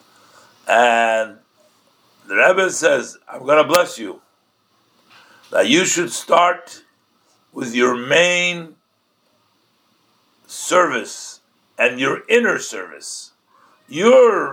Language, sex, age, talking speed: English, male, 60-79, 90 wpm